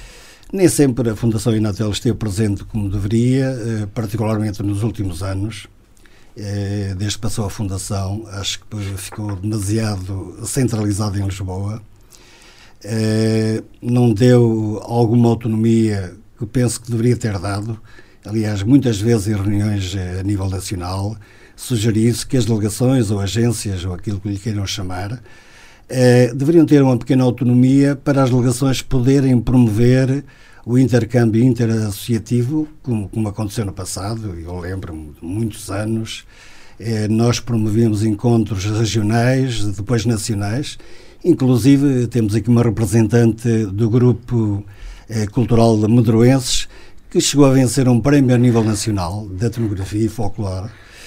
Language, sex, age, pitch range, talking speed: Portuguese, male, 50-69, 105-120 Hz, 130 wpm